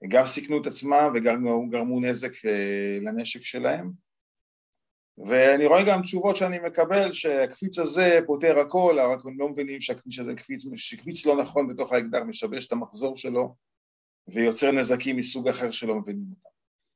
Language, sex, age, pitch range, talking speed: Hebrew, male, 40-59, 115-155 Hz, 140 wpm